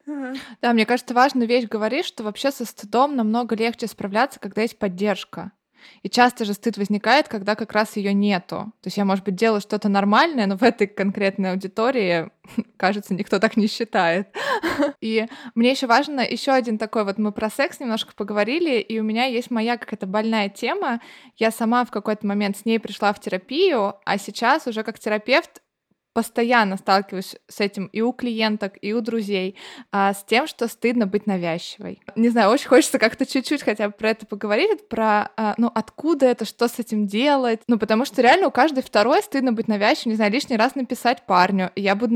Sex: female